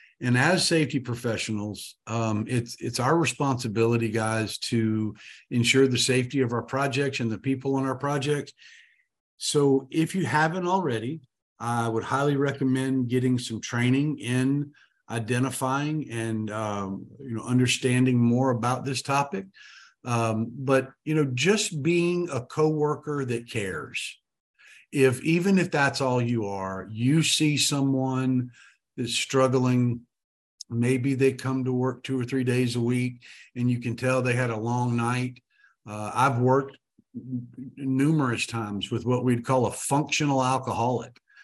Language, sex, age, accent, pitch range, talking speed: English, male, 50-69, American, 120-140 Hz, 140 wpm